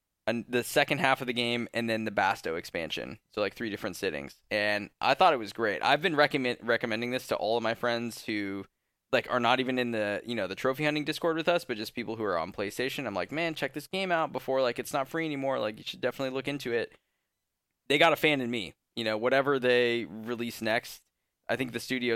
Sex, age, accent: male, 10-29, American